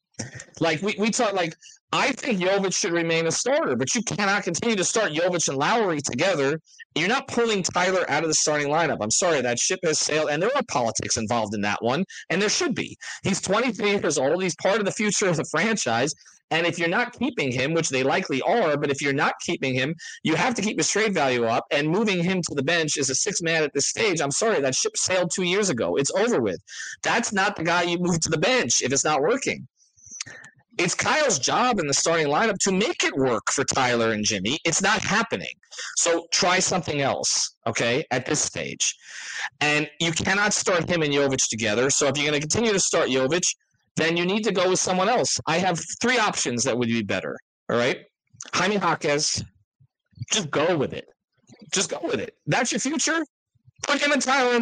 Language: English